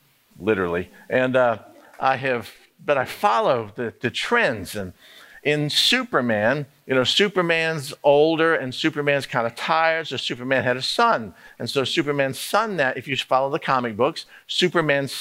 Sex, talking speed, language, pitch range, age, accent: male, 160 wpm, English, 135-180 Hz, 50-69, American